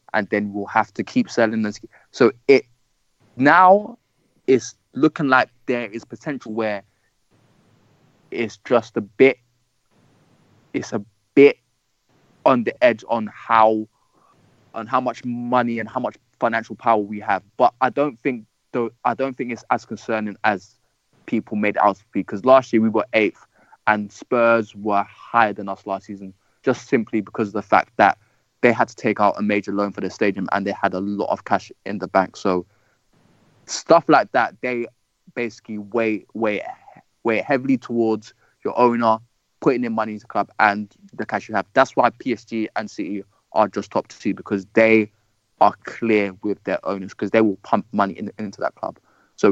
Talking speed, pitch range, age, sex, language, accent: 180 wpm, 105-120 Hz, 20-39, male, English, British